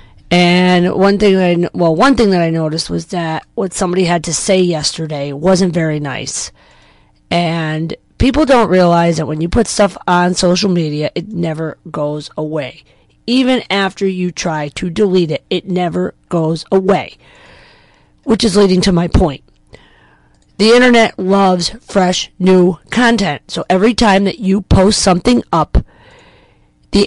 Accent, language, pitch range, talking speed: American, English, 165-200 Hz, 155 wpm